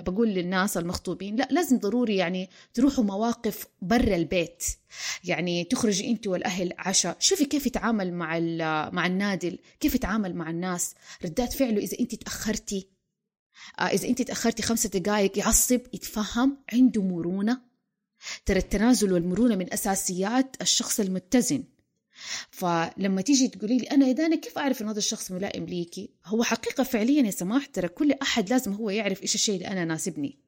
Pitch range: 180-240 Hz